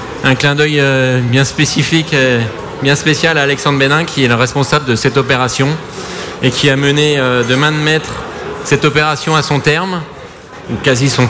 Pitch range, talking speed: 130-155 Hz, 190 wpm